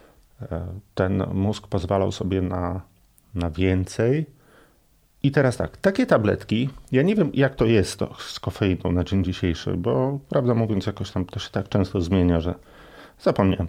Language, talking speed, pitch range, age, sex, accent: Polish, 160 wpm, 90-115 Hz, 40-59, male, native